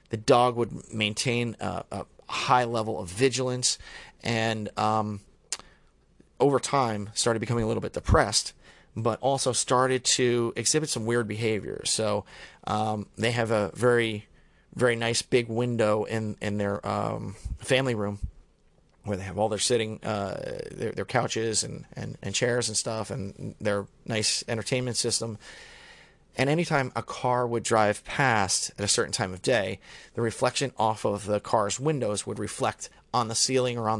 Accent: American